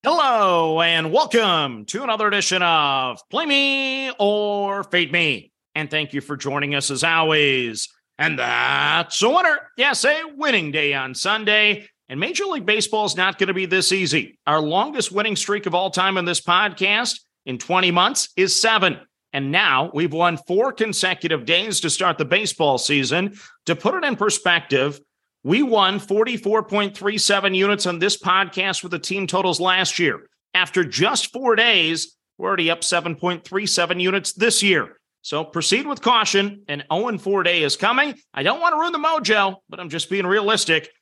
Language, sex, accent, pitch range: English, male, American, 155-210 Hz